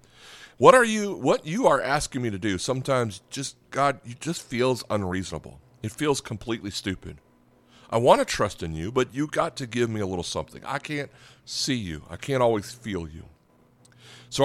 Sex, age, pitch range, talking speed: male, 40-59, 95-130 Hz, 190 wpm